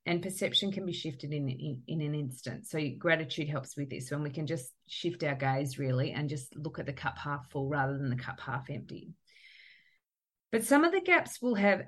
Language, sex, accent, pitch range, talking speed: English, female, Australian, 140-185 Hz, 220 wpm